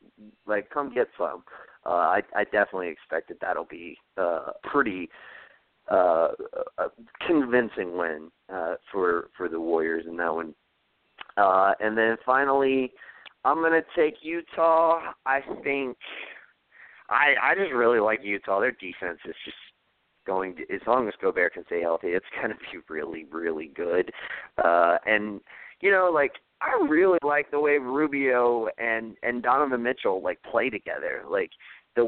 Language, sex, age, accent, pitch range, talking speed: English, male, 30-49, American, 100-160 Hz, 155 wpm